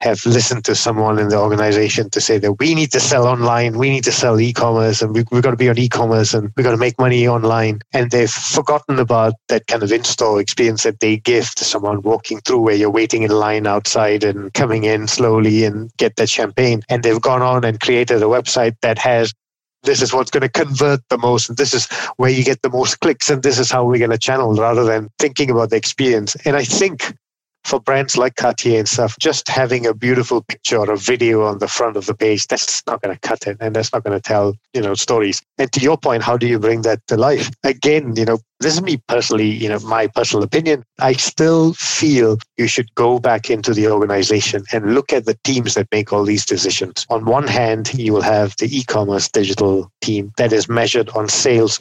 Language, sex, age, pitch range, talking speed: English, male, 30-49, 105-125 Hz, 235 wpm